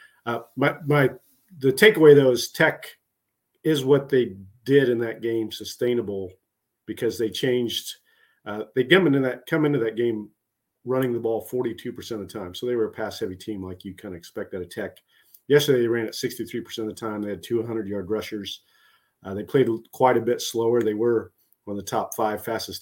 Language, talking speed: English, 220 wpm